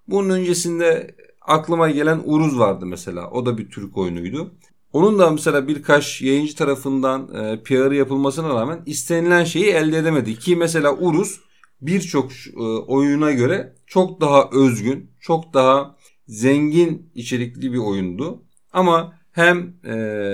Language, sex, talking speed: German, male, 125 wpm